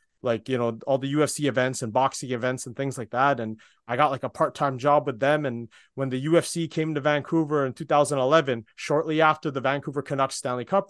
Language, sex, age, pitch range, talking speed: English, male, 30-49, 125-155 Hz, 215 wpm